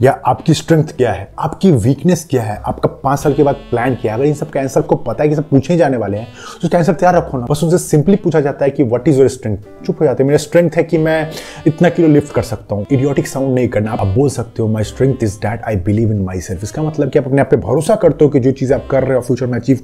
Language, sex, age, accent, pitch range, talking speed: Hindi, male, 20-39, native, 125-155 Hz, 290 wpm